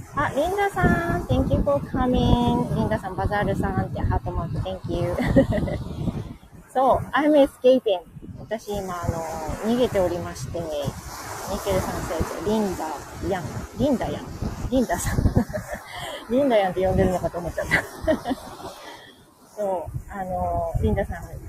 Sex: female